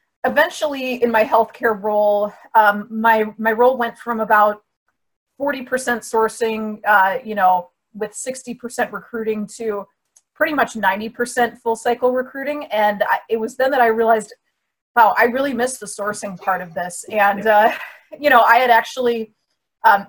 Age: 30-49